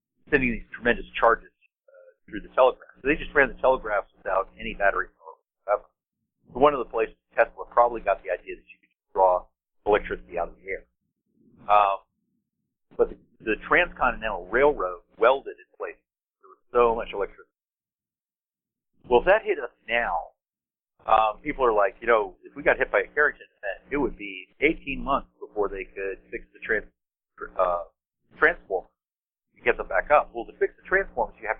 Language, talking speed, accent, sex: English, 180 wpm, American, male